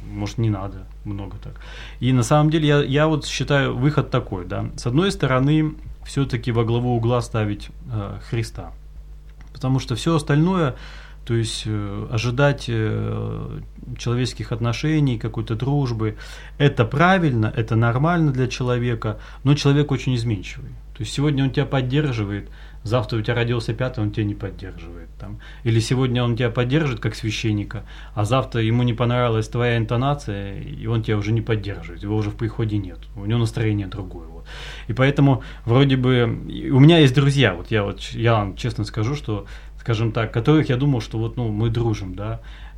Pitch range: 105-135 Hz